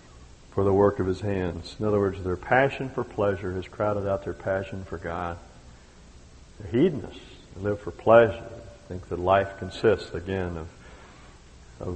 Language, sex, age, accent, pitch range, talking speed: English, male, 50-69, American, 85-105 Hz, 165 wpm